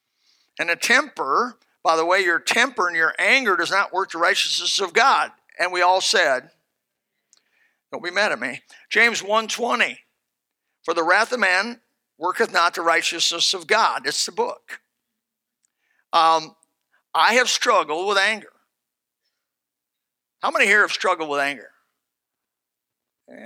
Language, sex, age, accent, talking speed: English, male, 50-69, American, 145 wpm